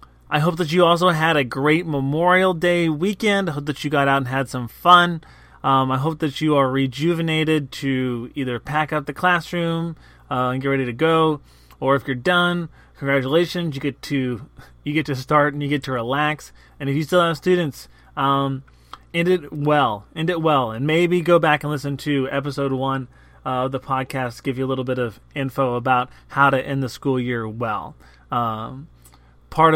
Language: English